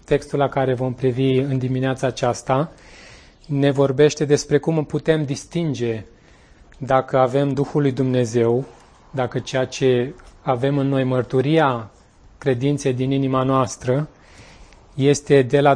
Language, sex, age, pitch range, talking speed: Romanian, male, 30-49, 125-145 Hz, 125 wpm